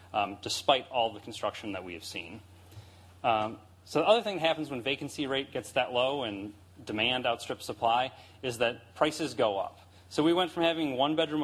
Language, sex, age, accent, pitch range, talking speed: English, male, 30-49, American, 100-140 Hz, 195 wpm